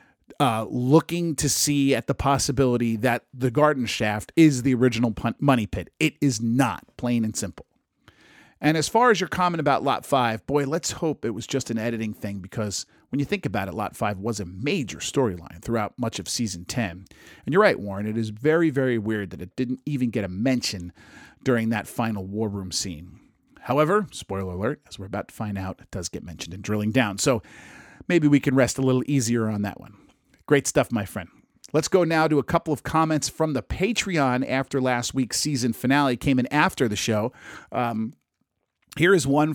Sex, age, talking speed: male, 40-59, 205 wpm